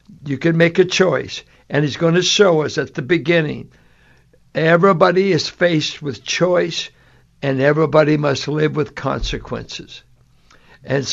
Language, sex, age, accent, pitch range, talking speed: English, male, 60-79, American, 145-180 Hz, 140 wpm